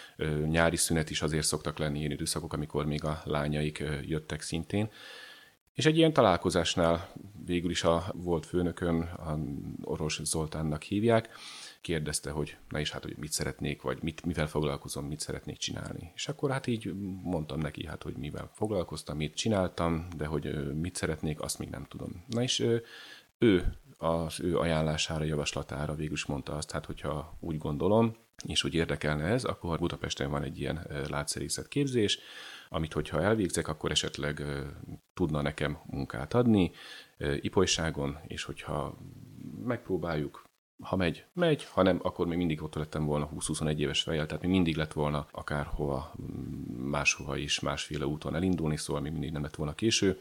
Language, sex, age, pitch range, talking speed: Hungarian, male, 30-49, 75-90 Hz, 155 wpm